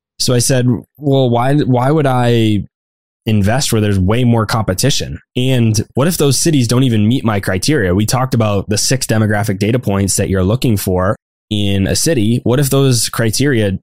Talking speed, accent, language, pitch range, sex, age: 185 wpm, American, English, 100-125 Hz, male, 10-29